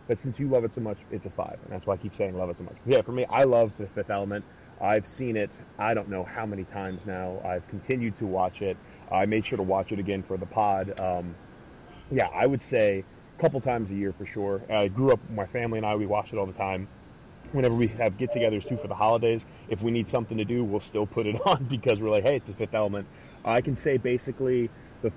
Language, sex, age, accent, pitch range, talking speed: English, male, 30-49, American, 100-120 Hz, 260 wpm